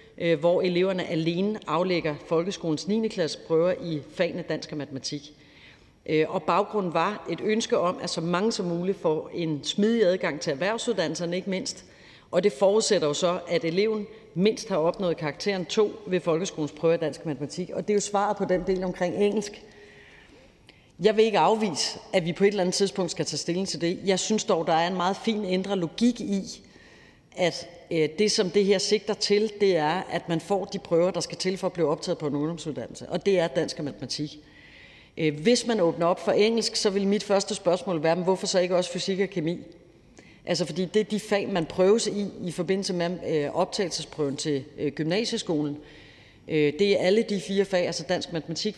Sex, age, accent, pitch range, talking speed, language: female, 40-59, native, 165-200 Hz, 200 wpm, Danish